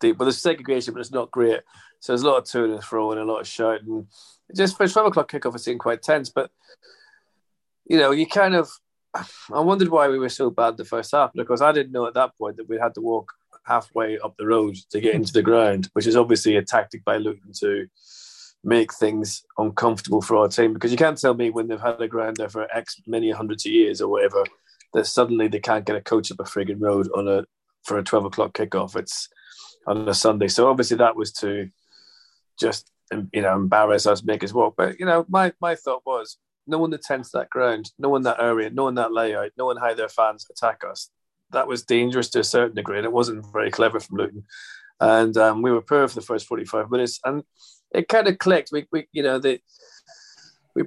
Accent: British